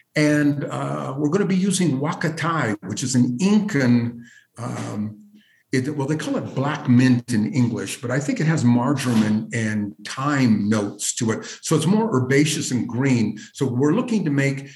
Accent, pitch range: American, 125-155 Hz